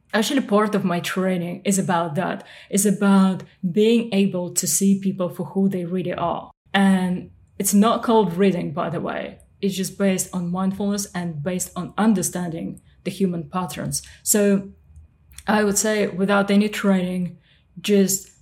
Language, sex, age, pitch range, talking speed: English, female, 20-39, 175-200 Hz, 155 wpm